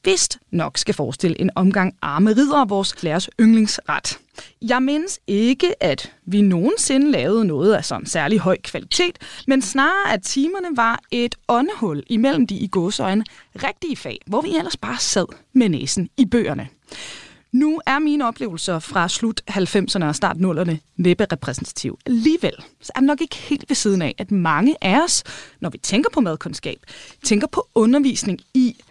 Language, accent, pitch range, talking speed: Danish, native, 190-275 Hz, 165 wpm